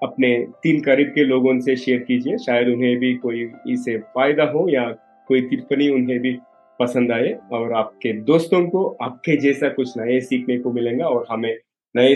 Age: 30-49